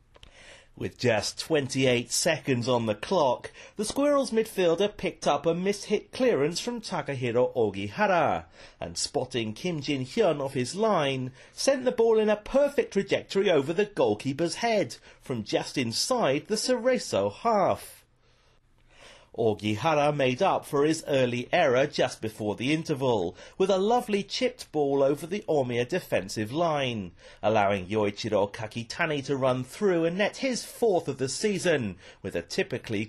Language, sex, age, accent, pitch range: Japanese, male, 40-59, British, 125-205 Hz